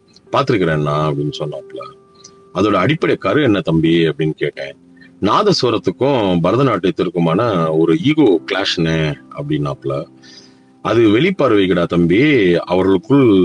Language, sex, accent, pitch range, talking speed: Tamil, male, native, 85-135 Hz, 100 wpm